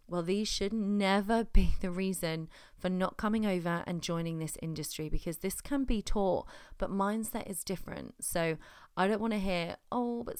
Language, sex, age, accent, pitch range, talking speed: English, female, 30-49, British, 170-210 Hz, 185 wpm